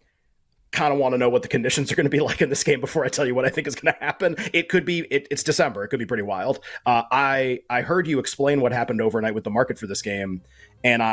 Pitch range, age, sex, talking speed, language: 115-155 Hz, 30-49, male, 285 wpm, English